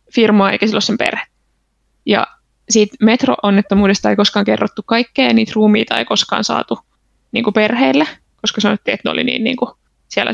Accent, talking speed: native, 175 wpm